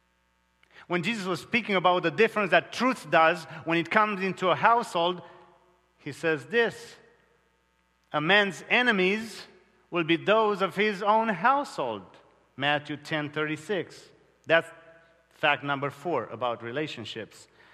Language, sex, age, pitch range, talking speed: English, male, 40-59, 130-195 Hz, 130 wpm